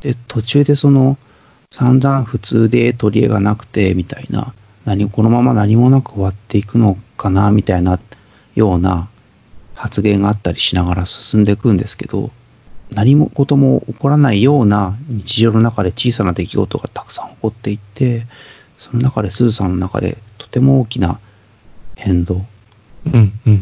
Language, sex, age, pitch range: Japanese, male, 40-59, 95-120 Hz